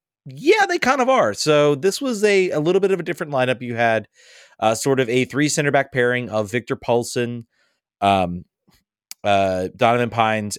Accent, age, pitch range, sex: American, 30-49, 105-135 Hz, male